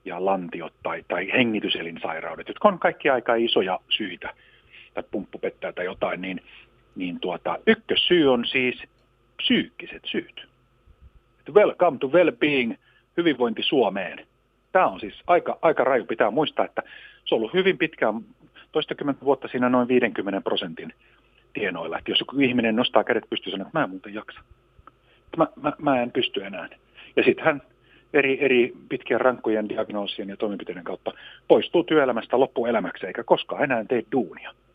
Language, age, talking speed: Finnish, 50-69, 150 wpm